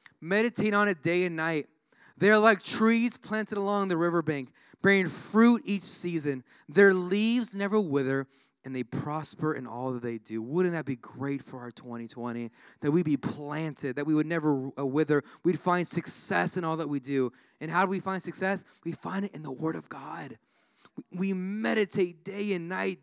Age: 20-39